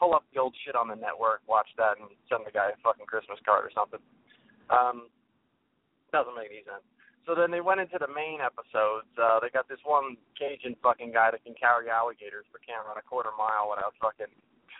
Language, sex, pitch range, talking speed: English, male, 115-160 Hz, 215 wpm